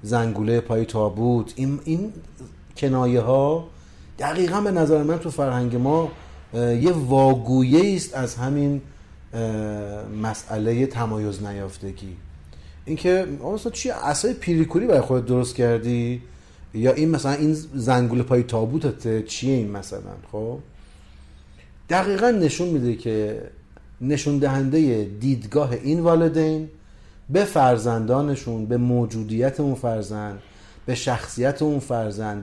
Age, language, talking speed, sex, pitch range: 40-59, Persian, 110 wpm, male, 110-150 Hz